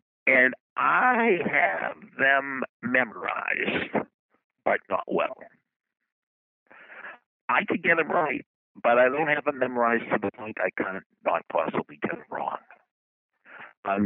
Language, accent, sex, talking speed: English, American, male, 130 wpm